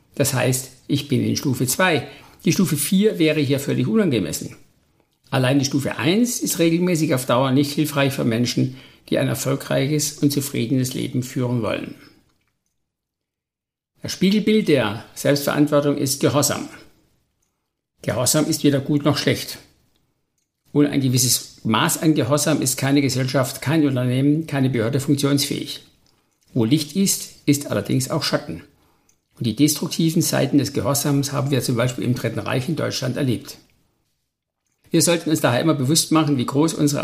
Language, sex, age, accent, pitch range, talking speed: German, male, 60-79, German, 135-155 Hz, 150 wpm